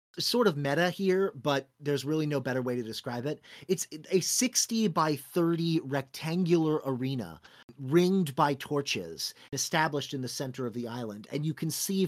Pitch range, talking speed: 125-155 Hz, 170 wpm